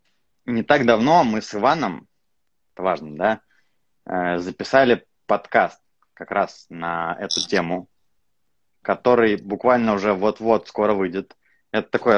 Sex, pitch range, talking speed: male, 100-120 Hz, 120 wpm